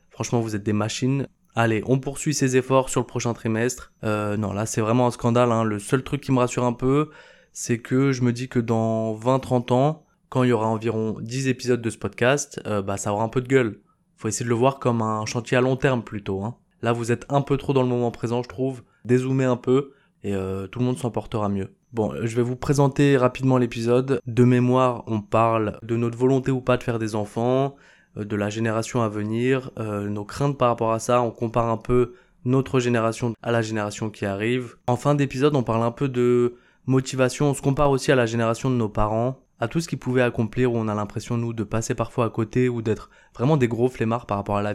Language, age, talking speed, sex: French, 20-39, 245 wpm, male